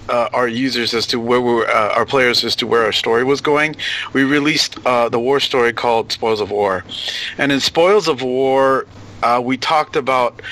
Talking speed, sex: 205 wpm, male